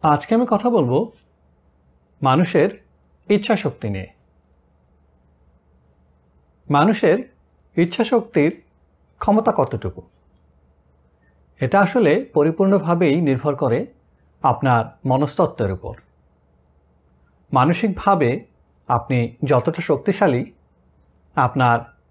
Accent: native